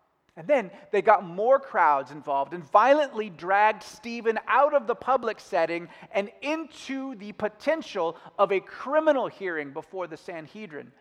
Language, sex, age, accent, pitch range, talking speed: English, male, 30-49, American, 160-225 Hz, 145 wpm